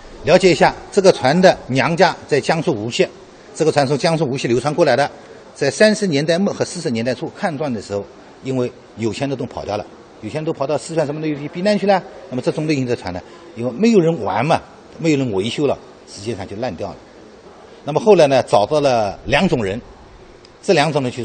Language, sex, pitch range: Chinese, male, 125-200 Hz